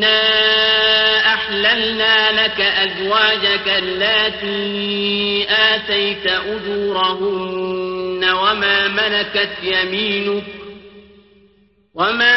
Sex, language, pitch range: male, Arabic, 195-215 Hz